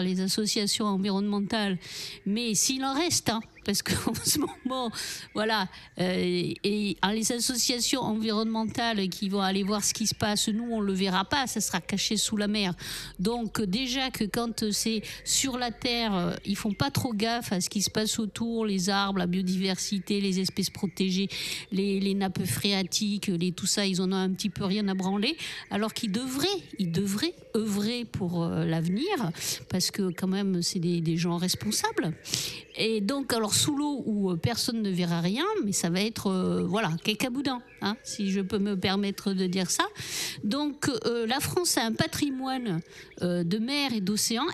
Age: 50-69